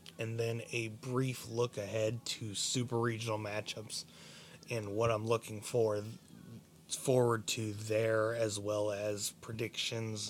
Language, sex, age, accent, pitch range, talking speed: English, male, 20-39, American, 105-125 Hz, 120 wpm